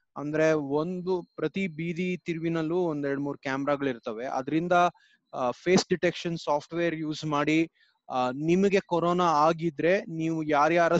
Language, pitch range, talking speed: Kannada, 150-185 Hz, 120 wpm